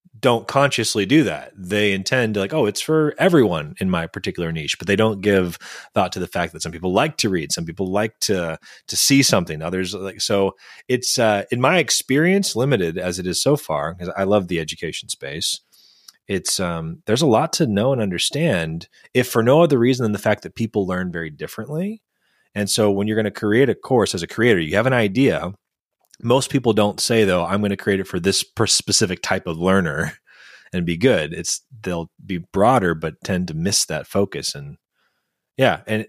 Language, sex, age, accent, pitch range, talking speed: English, male, 30-49, American, 90-115 Hz, 210 wpm